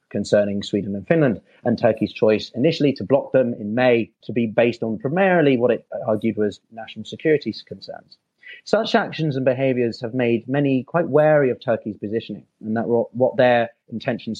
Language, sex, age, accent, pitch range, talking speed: English, male, 30-49, British, 110-145 Hz, 175 wpm